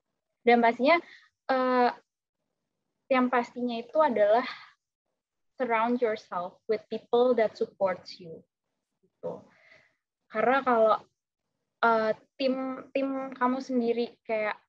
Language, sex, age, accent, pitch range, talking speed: English, female, 10-29, Indonesian, 205-255 Hz, 95 wpm